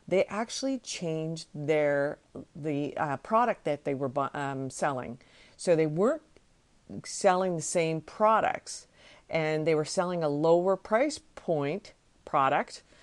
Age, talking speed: 50-69, 130 wpm